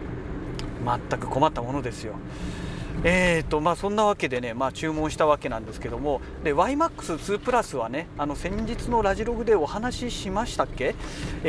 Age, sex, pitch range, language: 40-59, male, 130-195 Hz, Japanese